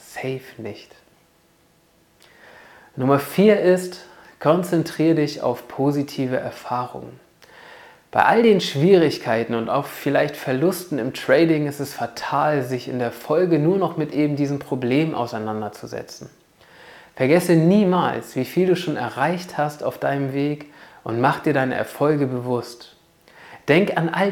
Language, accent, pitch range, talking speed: German, German, 130-170 Hz, 135 wpm